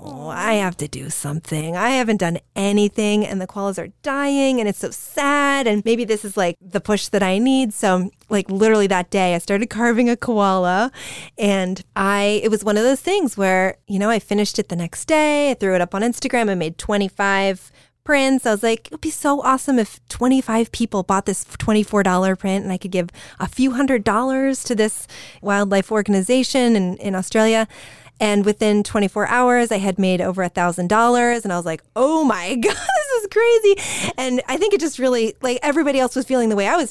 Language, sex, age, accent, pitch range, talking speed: English, female, 20-39, American, 195-245 Hz, 210 wpm